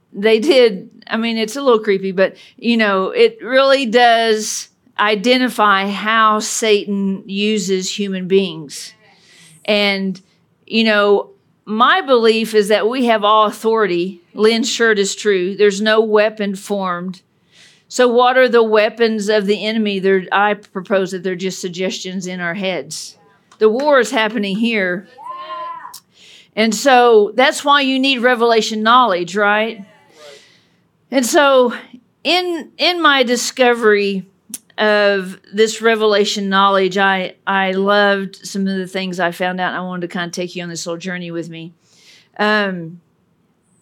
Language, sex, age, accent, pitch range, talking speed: English, female, 50-69, American, 190-230 Hz, 140 wpm